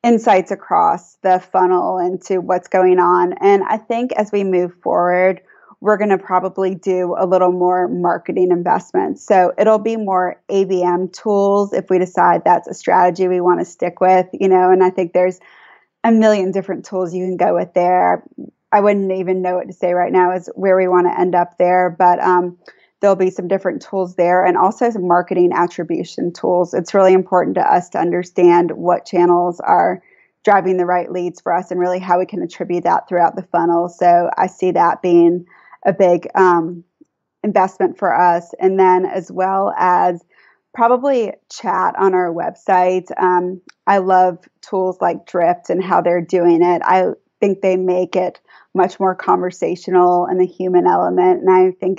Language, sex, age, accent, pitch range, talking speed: English, female, 20-39, American, 180-190 Hz, 185 wpm